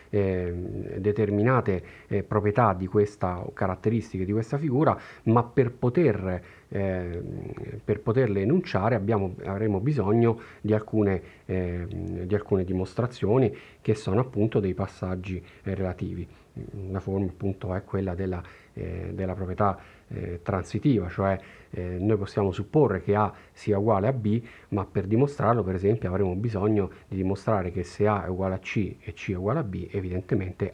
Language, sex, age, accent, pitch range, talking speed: Italian, male, 40-59, native, 90-110 Hz, 155 wpm